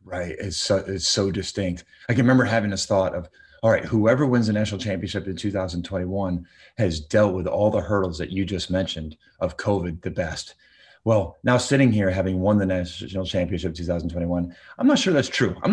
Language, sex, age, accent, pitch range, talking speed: English, male, 30-49, American, 90-110 Hz, 200 wpm